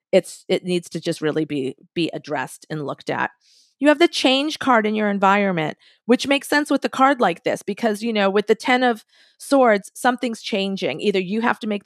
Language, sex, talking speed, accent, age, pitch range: English, female, 220 wpm, American, 40-59, 180-235 Hz